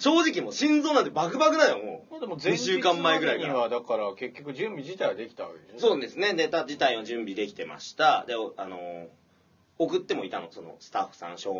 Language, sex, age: Japanese, male, 30-49